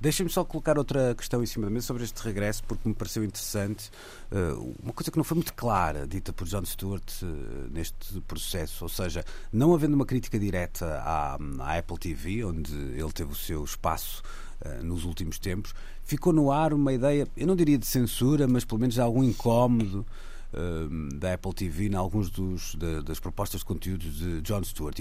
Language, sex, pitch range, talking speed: Portuguese, male, 90-115 Hz, 180 wpm